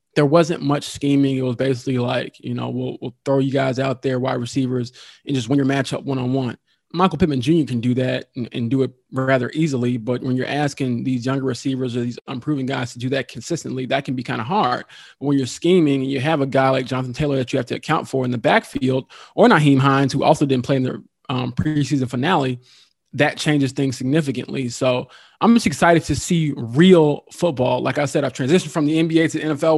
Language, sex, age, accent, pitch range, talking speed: English, male, 20-39, American, 130-155 Hz, 230 wpm